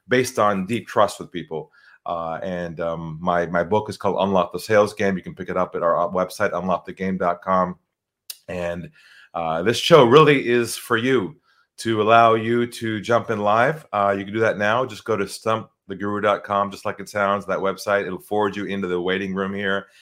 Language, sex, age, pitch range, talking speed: English, male, 30-49, 95-115 Hz, 200 wpm